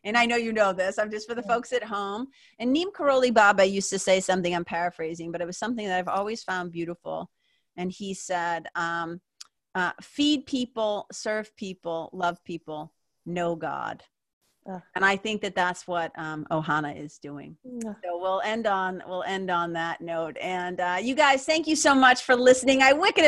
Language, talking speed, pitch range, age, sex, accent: English, 195 wpm, 185-245 Hz, 40-59, female, American